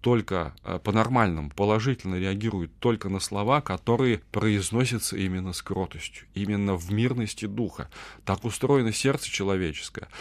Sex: male